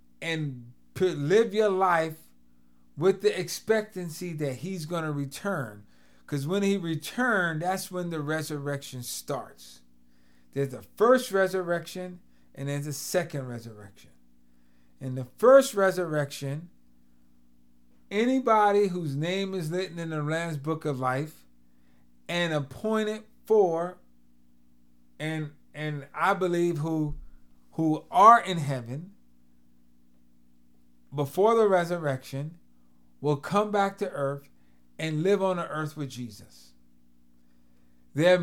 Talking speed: 115 wpm